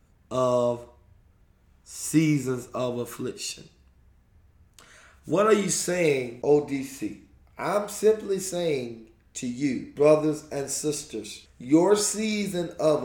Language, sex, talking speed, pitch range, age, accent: English, male, 90 wpm, 115-180 Hz, 30-49, American